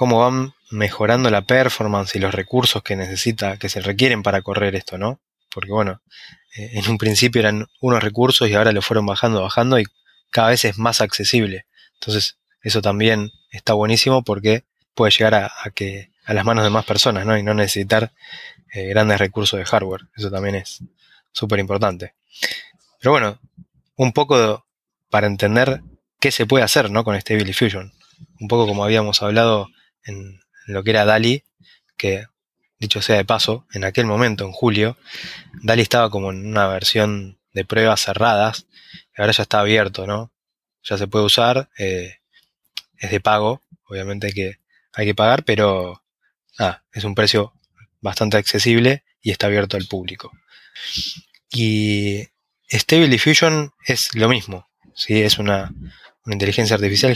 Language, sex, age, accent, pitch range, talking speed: Spanish, male, 20-39, Argentinian, 100-115 Hz, 165 wpm